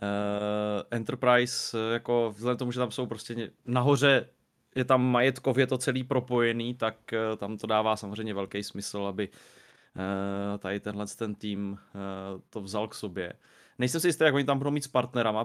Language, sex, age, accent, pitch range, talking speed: Czech, male, 20-39, native, 100-125 Hz, 160 wpm